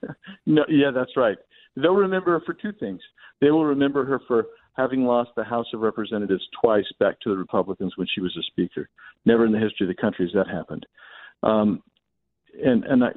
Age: 50-69